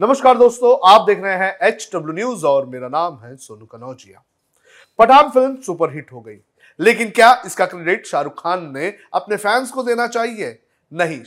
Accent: native